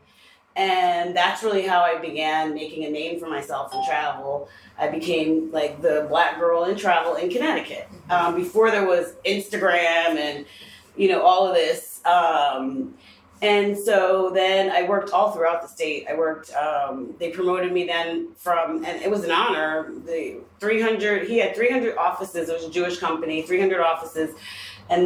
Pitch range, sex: 150-185 Hz, female